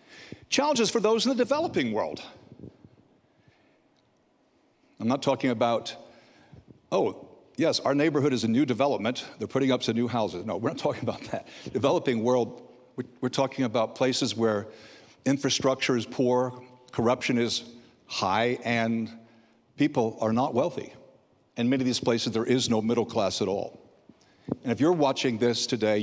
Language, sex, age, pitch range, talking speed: English, male, 60-79, 115-135 Hz, 155 wpm